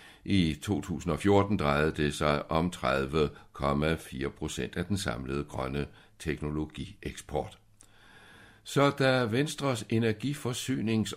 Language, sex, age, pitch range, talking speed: Danish, male, 60-79, 75-110 Hz, 90 wpm